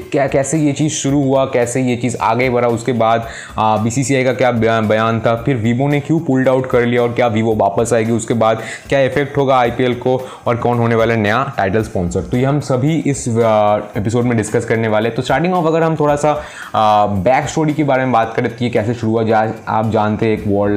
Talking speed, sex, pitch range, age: 235 wpm, male, 110-130 Hz, 20-39